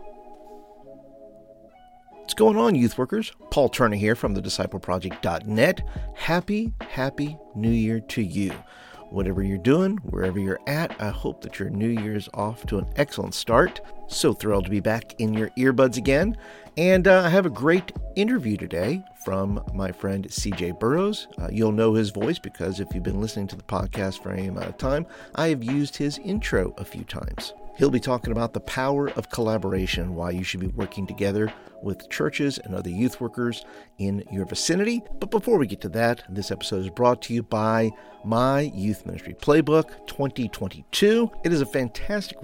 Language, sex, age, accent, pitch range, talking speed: English, male, 50-69, American, 100-145 Hz, 180 wpm